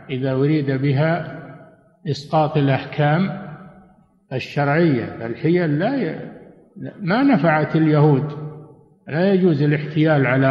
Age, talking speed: 50-69, 90 wpm